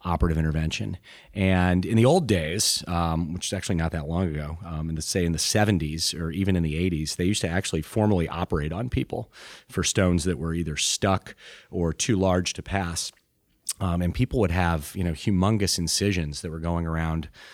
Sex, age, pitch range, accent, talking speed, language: male, 30-49, 85-100 Hz, American, 200 wpm, English